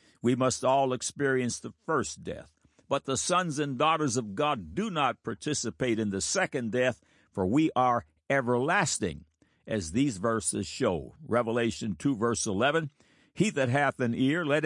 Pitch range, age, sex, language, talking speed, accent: 110-150 Hz, 60-79, male, English, 160 wpm, American